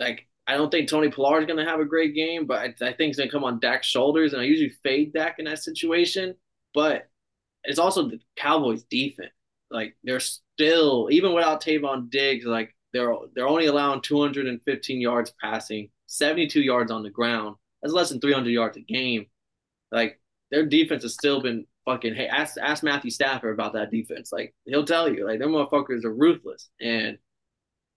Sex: male